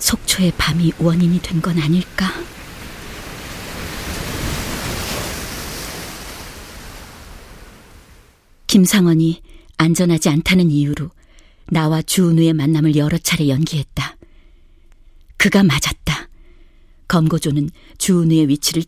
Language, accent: Korean, native